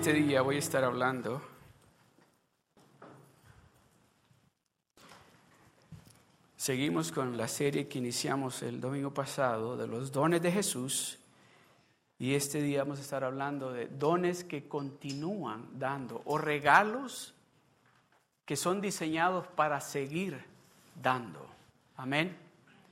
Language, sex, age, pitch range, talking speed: Spanish, male, 50-69, 130-165 Hz, 105 wpm